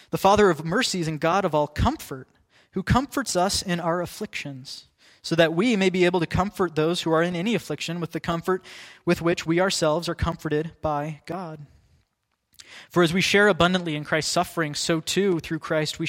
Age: 20-39